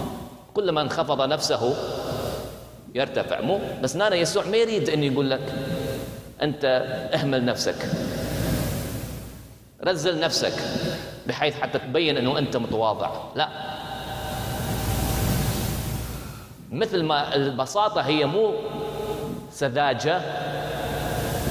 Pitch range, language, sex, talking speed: 125-165 Hz, English, male, 85 wpm